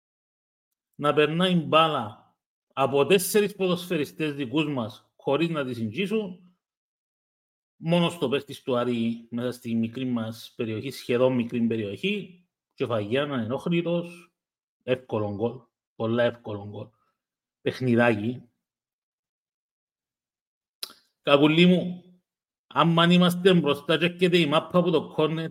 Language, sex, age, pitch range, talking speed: English, male, 40-59, 120-175 Hz, 105 wpm